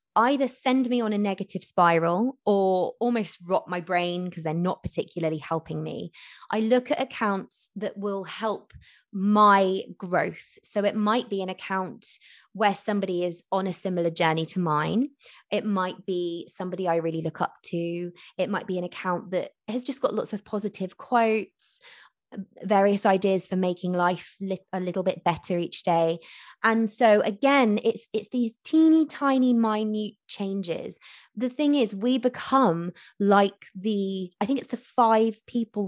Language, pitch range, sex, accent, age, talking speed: English, 180-235 Hz, female, British, 20-39, 165 wpm